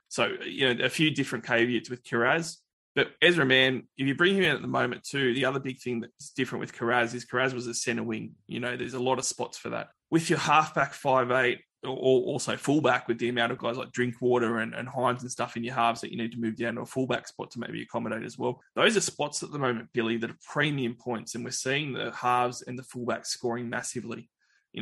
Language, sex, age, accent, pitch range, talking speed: English, male, 20-39, Australian, 115-130 Hz, 250 wpm